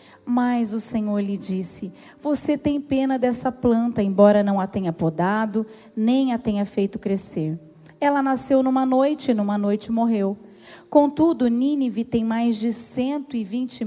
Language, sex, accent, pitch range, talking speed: Portuguese, female, Brazilian, 215-280 Hz, 145 wpm